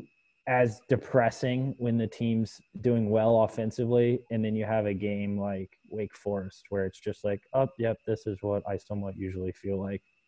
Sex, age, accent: male, 20-39, American